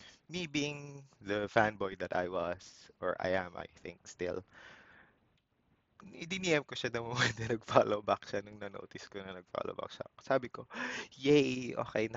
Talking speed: 175 wpm